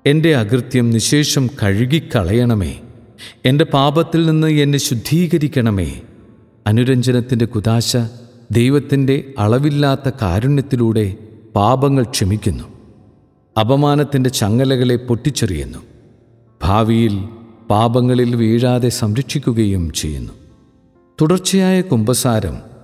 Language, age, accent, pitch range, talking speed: Malayalam, 50-69, native, 110-135 Hz, 70 wpm